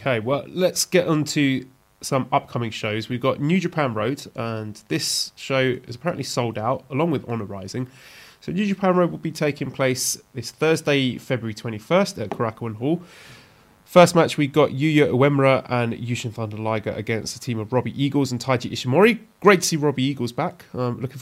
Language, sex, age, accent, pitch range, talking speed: English, male, 30-49, British, 115-155 Hz, 190 wpm